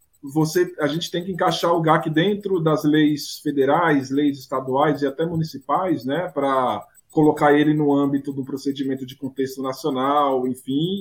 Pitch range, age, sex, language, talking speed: 130-160 Hz, 20-39, male, Portuguese, 160 wpm